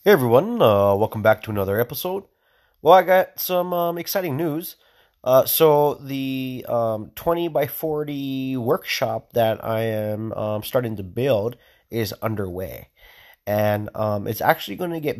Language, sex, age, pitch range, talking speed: English, male, 30-49, 105-130 Hz, 150 wpm